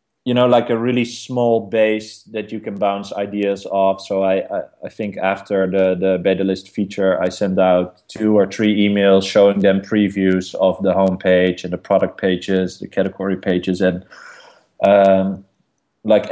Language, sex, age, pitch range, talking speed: English, male, 20-39, 95-105 Hz, 175 wpm